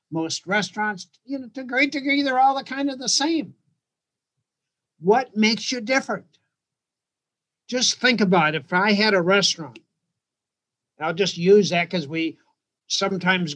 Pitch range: 170-220 Hz